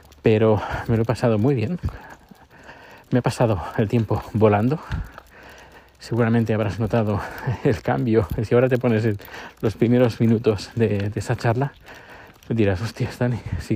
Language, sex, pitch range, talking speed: Spanish, male, 105-125 Hz, 140 wpm